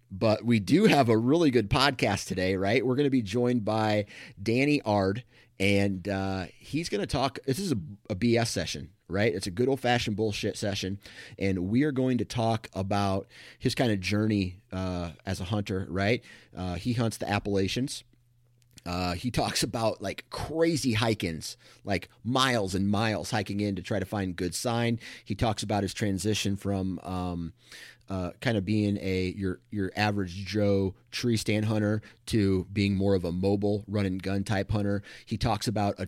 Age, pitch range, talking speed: 30-49, 95-115 Hz, 180 wpm